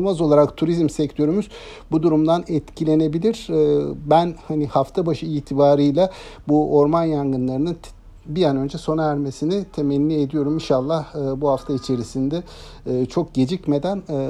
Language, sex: Turkish, male